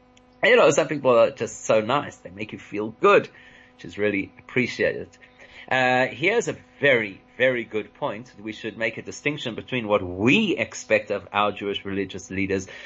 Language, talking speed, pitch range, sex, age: English, 175 wpm, 105-135 Hz, male, 30-49